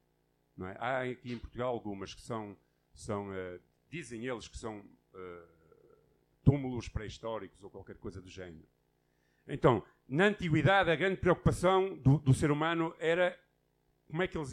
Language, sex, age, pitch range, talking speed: Portuguese, male, 50-69, 110-150 Hz, 140 wpm